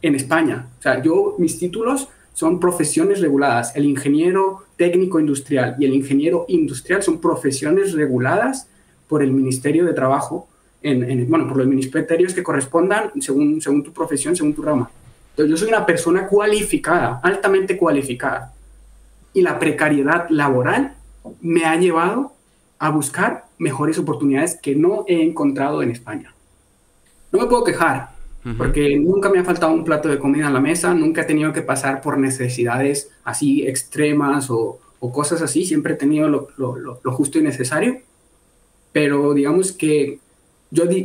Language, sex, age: Spanish, male, 30-49